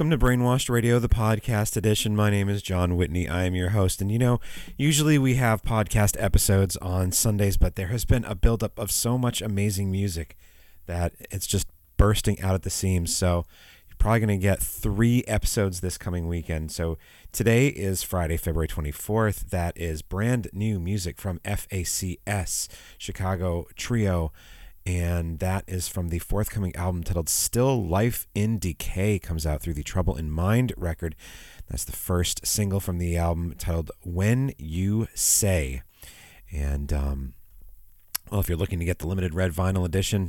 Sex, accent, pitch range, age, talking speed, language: male, American, 85-105 Hz, 30-49, 170 wpm, English